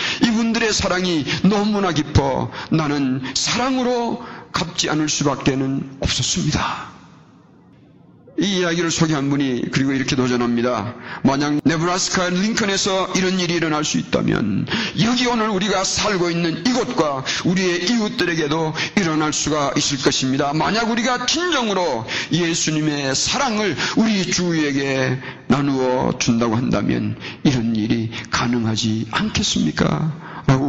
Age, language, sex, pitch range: 40-59, Korean, male, 130-185 Hz